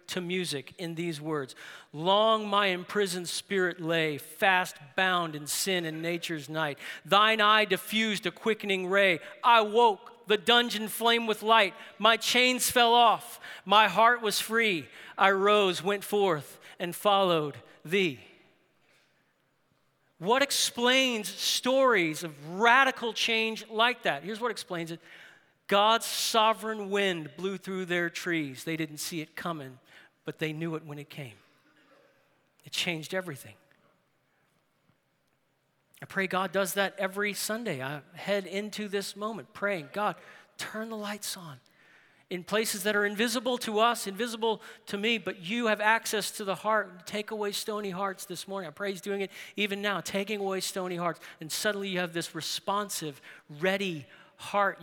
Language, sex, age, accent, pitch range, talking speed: English, male, 40-59, American, 170-215 Hz, 150 wpm